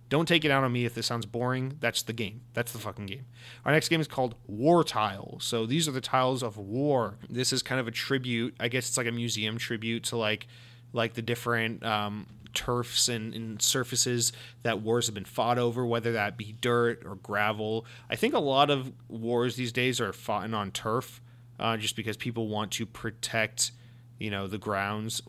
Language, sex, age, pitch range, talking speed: English, male, 30-49, 110-125 Hz, 210 wpm